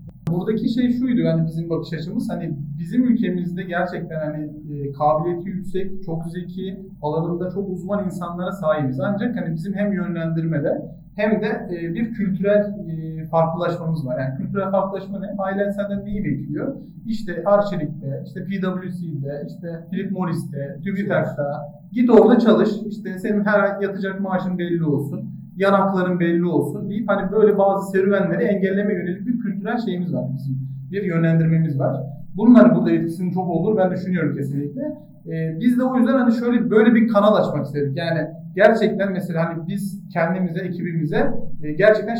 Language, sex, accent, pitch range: Turkish, male, native, 160-205 Hz